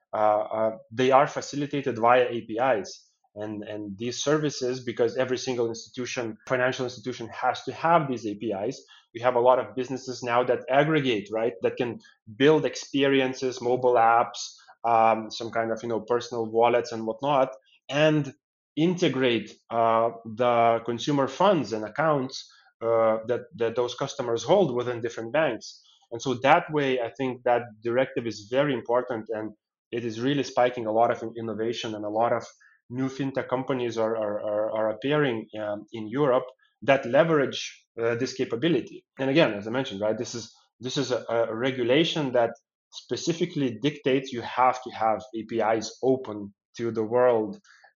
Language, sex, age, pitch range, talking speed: Portuguese, male, 20-39, 115-135 Hz, 165 wpm